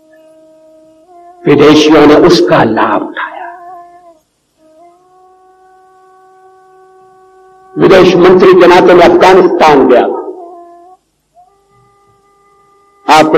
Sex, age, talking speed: male, 60-79, 50 wpm